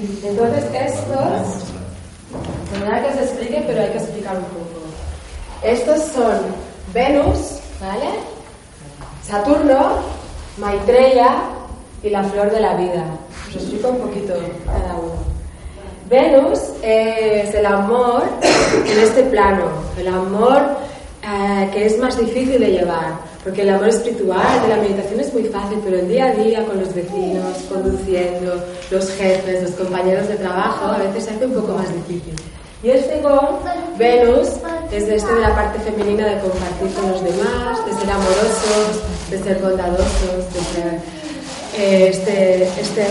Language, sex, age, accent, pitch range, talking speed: Spanish, female, 20-39, Spanish, 185-225 Hz, 145 wpm